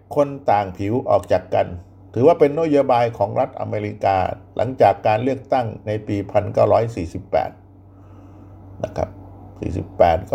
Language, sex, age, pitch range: Thai, male, 60-79, 95-140 Hz